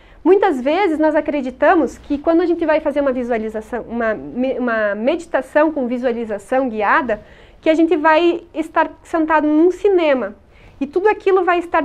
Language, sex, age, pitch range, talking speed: English, female, 30-49, 270-345 Hz, 155 wpm